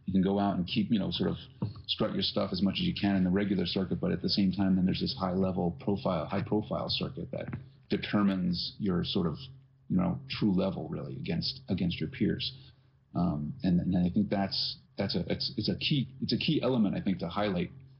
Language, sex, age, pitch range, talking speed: English, male, 30-49, 95-130 Hz, 225 wpm